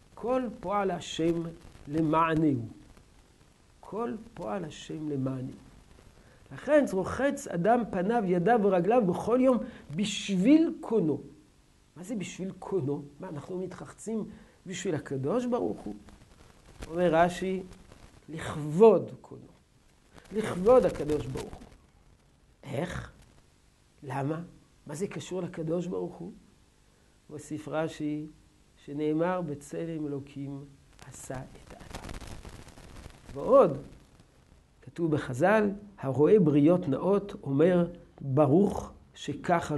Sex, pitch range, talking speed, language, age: male, 140-200 Hz, 95 wpm, Hebrew, 50-69